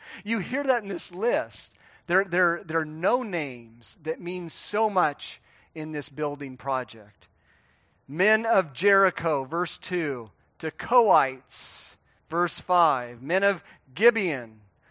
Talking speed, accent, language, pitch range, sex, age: 120 wpm, American, English, 140-205 Hz, male, 40-59